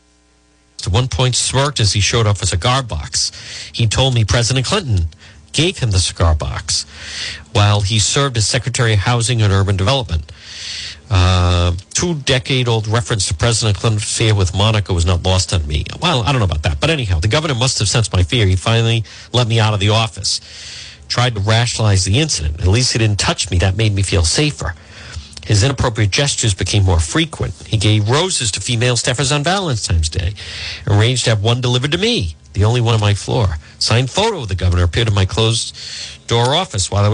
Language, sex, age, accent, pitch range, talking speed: English, male, 50-69, American, 95-120 Hz, 205 wpm